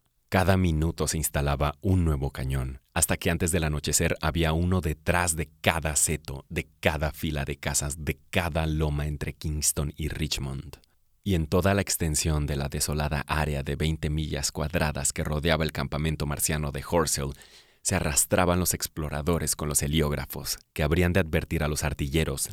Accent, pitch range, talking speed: Mexican, 75-90 Hz, 170 wpm